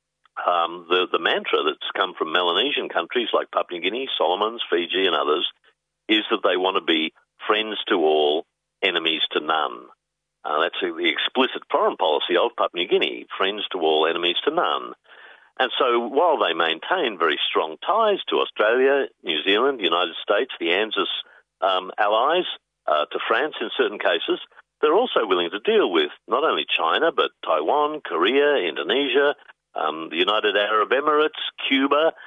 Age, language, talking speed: 50-69, English, 165 wpm